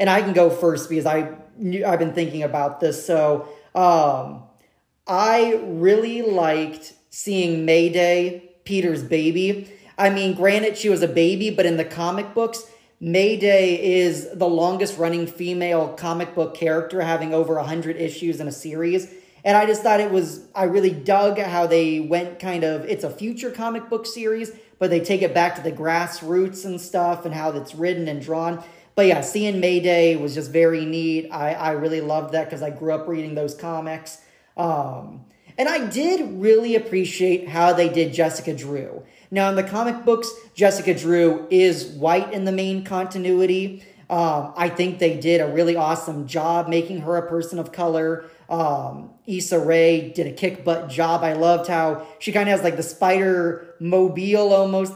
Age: 30-49